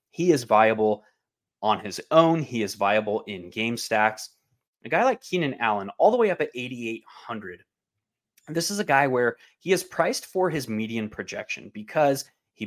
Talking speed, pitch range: 175 wpm, 105-140 Hz